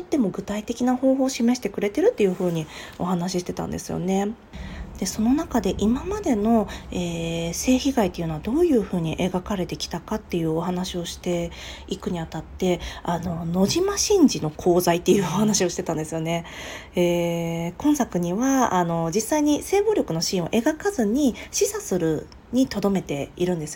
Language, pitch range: Japanese, 170-240 Hz